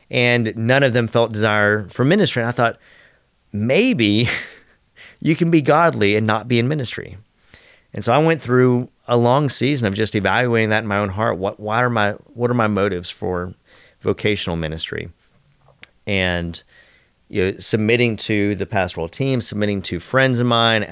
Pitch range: 95-115 Hz